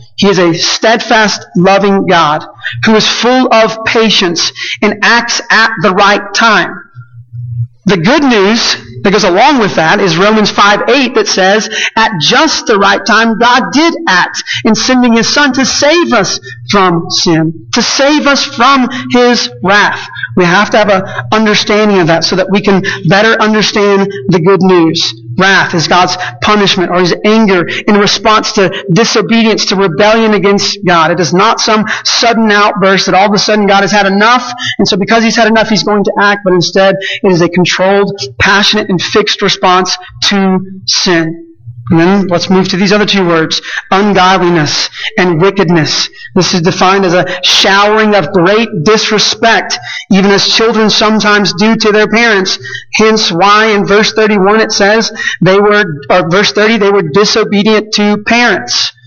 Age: 40-59